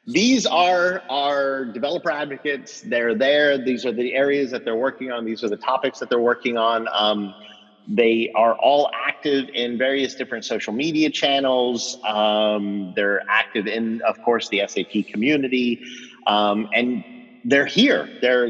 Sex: male